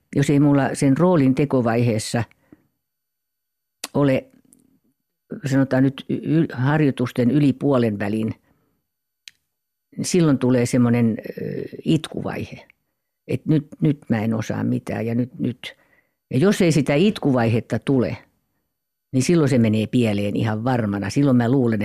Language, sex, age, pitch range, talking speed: Finnish, female, 50-69, 115-145 Hz, 125 wpm